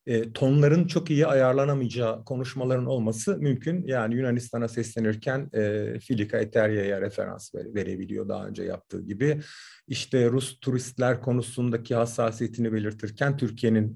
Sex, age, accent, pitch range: male, 40-59, native, 110-140 Hz